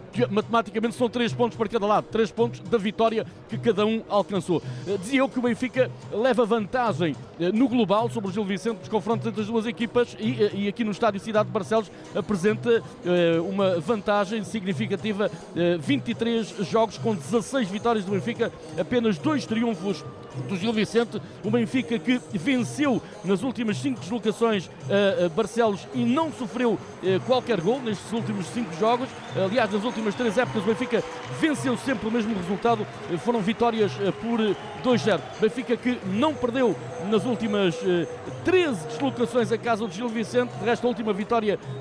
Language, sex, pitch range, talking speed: Portuguese, male, 205-245 Hz, 165 wpm